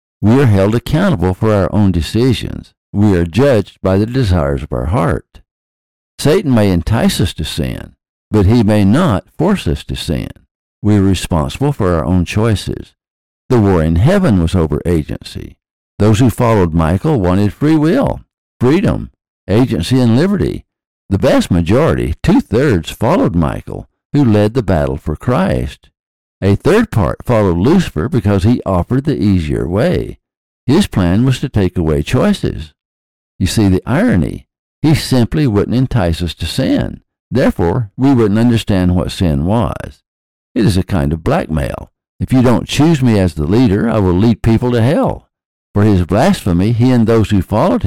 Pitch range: 90-120 Hz